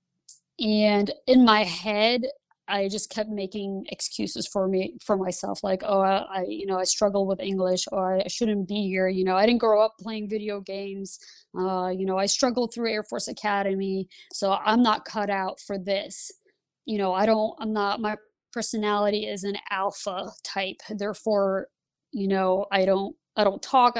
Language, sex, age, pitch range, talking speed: English, female, 20-39, 190-220 Hz, 185 wpm